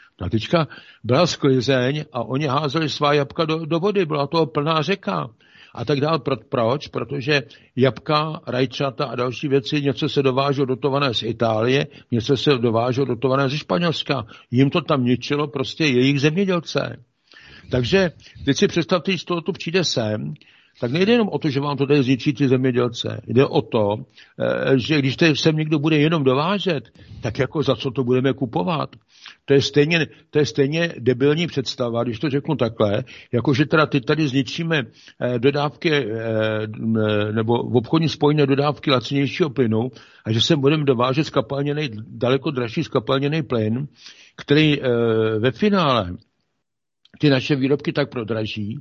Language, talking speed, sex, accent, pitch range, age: Czech, 155 wpm, male, native, 125-155 Hz, 60-79